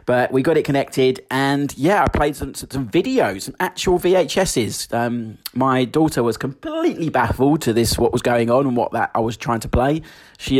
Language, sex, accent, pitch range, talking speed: English, male, British, 110-140 Hz, 205 wpm